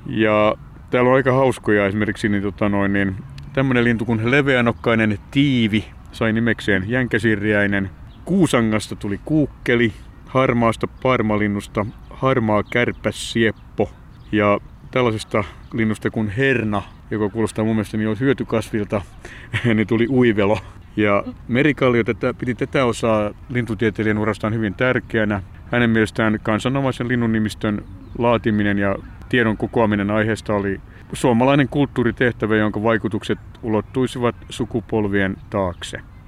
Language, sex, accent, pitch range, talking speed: Finnish, male, native, 105-120 Hz, 110 wpm